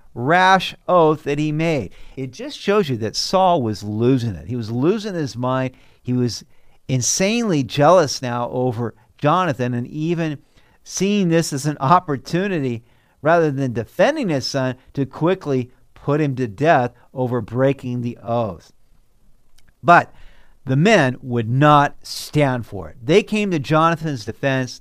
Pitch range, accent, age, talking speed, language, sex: 115-150 Hz, American, 50-69, 150 wpm, English, male